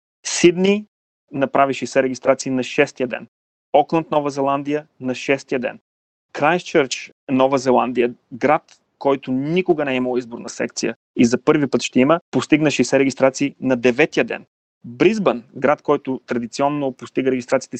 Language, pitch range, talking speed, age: Bulgarian, 120-145 Hz, 140 wpm, 30-49